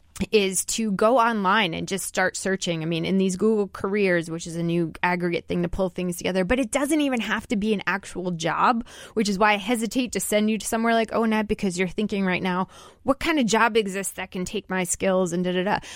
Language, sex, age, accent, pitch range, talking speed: English, female, 20-39, American, 180-230 Hz, 250 wpm